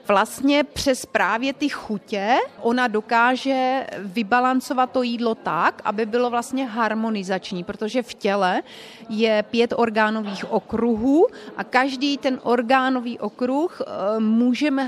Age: 30-49